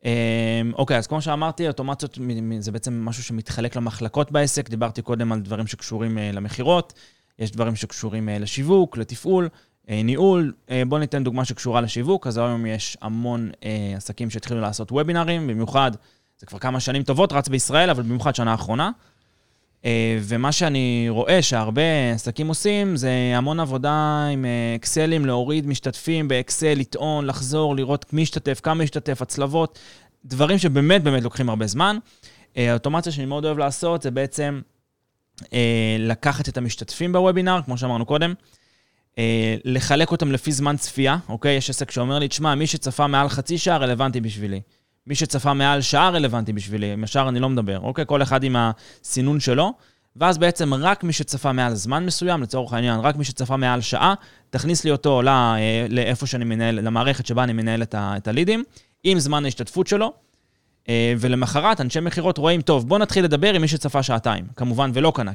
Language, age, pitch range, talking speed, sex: Hebrew, 20-39, 115-150 Hz, 160 wpm, male